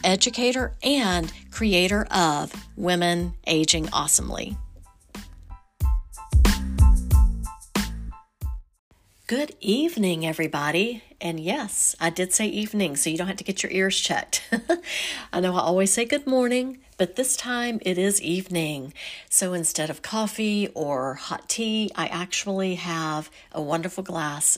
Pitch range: 155-200 Hz